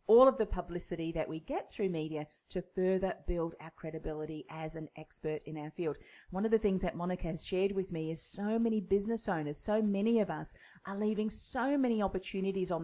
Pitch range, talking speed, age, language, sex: 160-205 Hz, 210 wpm, 40-59, English, female